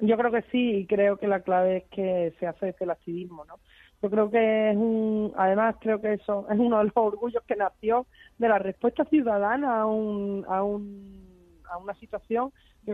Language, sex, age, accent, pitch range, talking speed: Spanish, female, 40-59, Spanish, 185-220 Hz, 205 wpm